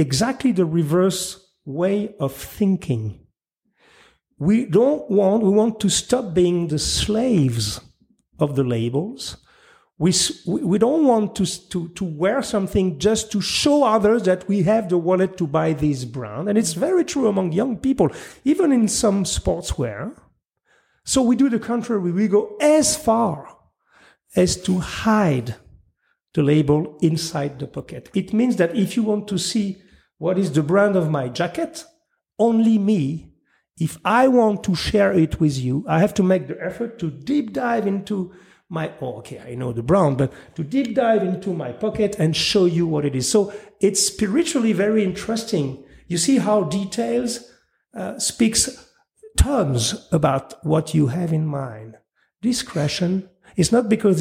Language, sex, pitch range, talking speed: English, male, 155-220 Hz, 160 wpm